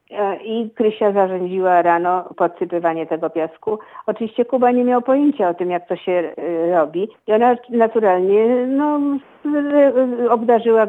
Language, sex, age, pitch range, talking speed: Polish, female, 50-69, 175-210 Hz, 120 wpm